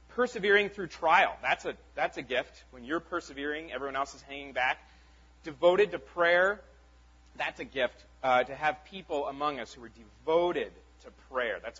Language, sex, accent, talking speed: English, male, American, 175 wpm